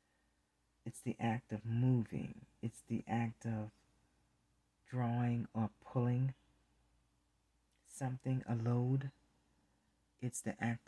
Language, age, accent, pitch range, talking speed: English, 40-59, American, 105-125 Hz, 100 wpm